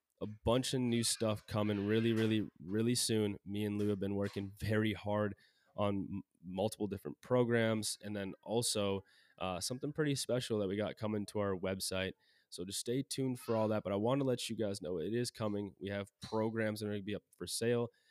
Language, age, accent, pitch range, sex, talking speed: English, 20-39, American, 100-115 Hz, male, 215 wpm